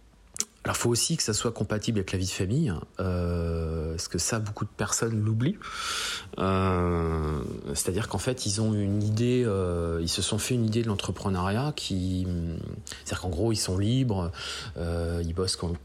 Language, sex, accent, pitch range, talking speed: French, male, French, 90-110 Hz, 180 wpm